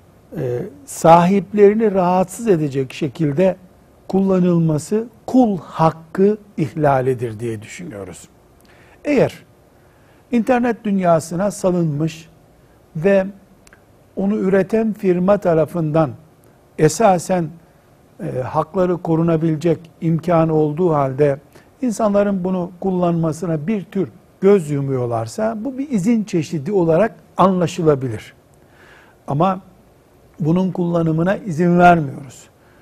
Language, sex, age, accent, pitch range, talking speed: Turkish, male, 60-79, native, 155-195 Hz, 80 wpm